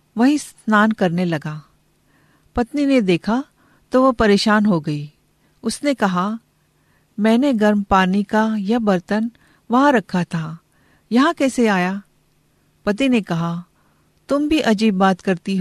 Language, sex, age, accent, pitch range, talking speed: Hindi, female, 50-69, native, 185-240 Hz, 130 wpm